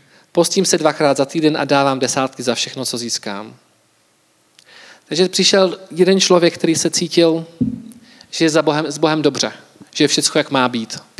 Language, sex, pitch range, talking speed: Czech, male, 125-185 Hz, 165 wpm